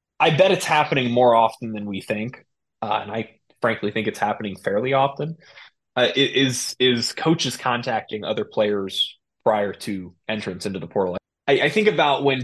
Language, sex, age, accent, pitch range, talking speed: English, male, 20-39, American, 115-145 Hz, 175 wpm